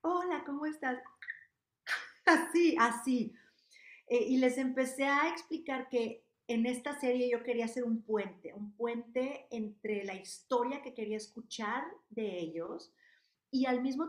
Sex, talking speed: female, 140 wpm